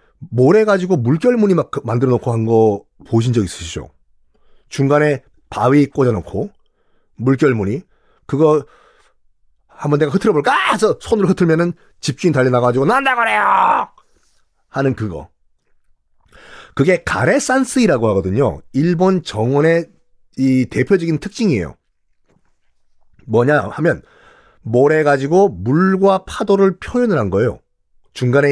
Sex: male